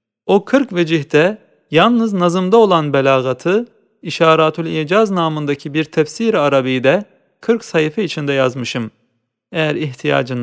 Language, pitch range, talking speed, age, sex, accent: Turkish, 145-200 Hz, 105 wpm, 40-59, male, native